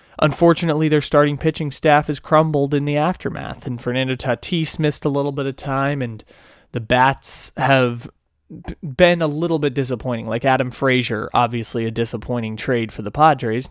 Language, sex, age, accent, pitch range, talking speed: English, male, 20-39, American, 115-145 Hz, 165 wpm